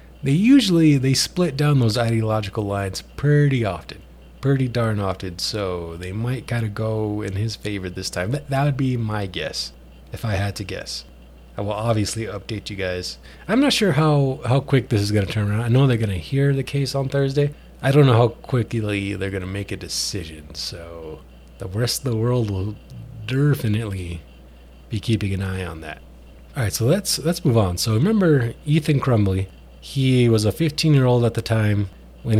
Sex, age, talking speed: male, 30-49, 200 wpm